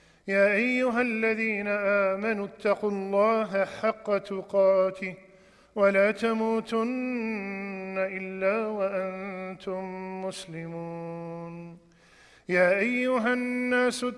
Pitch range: 200-245 Hz